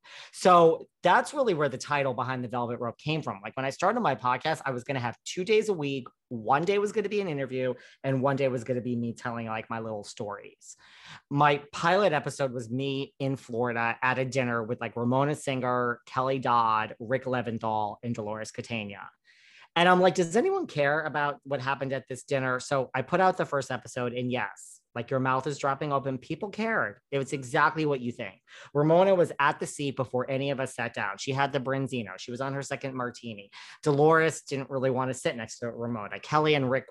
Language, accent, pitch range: English, American, 120-145 Hz